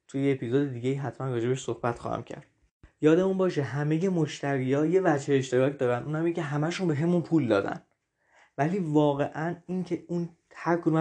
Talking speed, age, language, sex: 175 wpm, 20-39, Persian, male